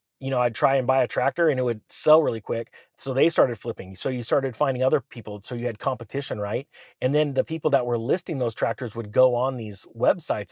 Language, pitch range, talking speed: English, 110-135 Hz, 245 wpm